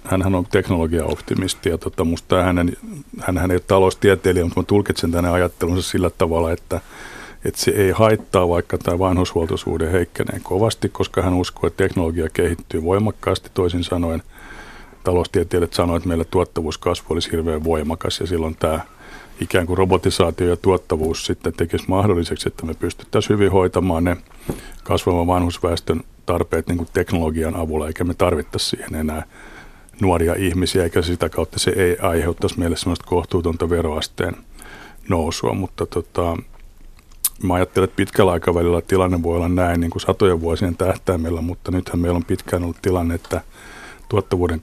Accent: native